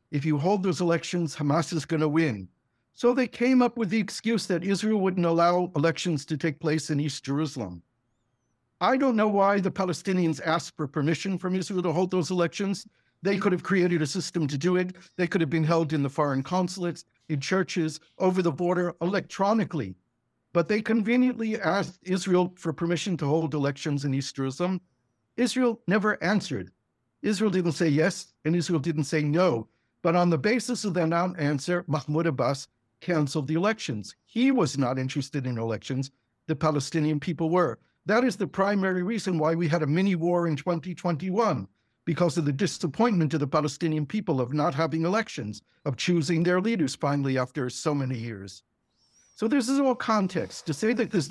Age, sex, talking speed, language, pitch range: 60-79, male, 185 wpm, English, 150-190 Hz